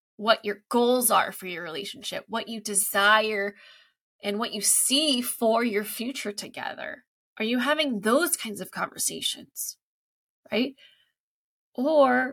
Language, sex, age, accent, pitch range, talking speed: English, female, 20-39, American, 210-285 Hz, 130 wpm